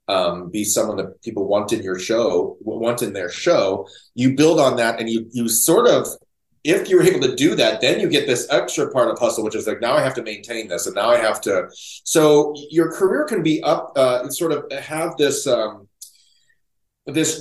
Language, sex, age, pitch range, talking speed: English, male, 30-49, 110-150 Hz, 220 wpm